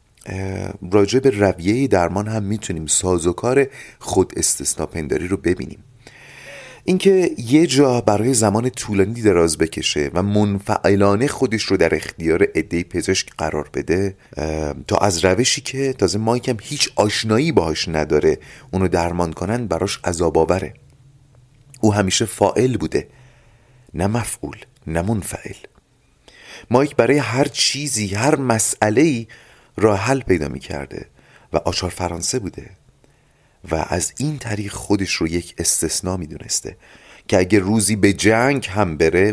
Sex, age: male, 30-49